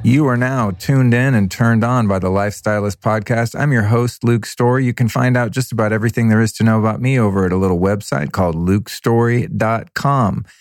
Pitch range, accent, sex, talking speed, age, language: 95-125 Hz, American, male, 210 wpm, 40-59, English